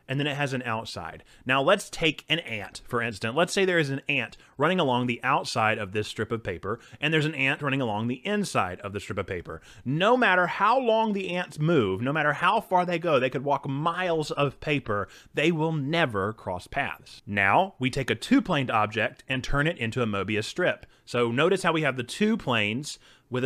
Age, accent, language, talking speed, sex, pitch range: 30-49, American, English, 225 wpm, male, 115-170 Hz